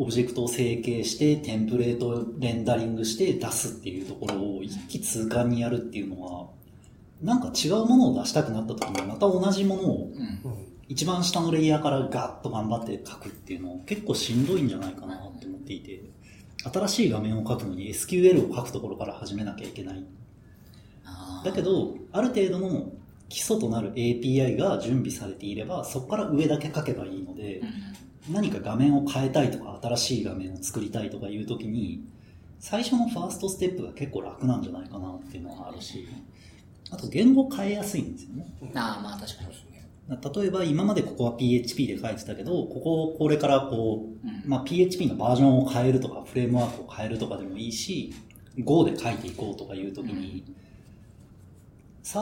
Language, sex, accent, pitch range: Japanese, male, native, 105-150 Hz